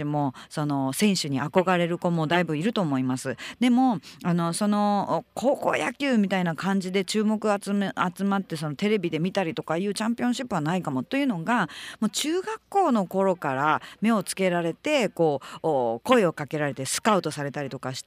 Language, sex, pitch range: Japanese, female, 155-240 Hz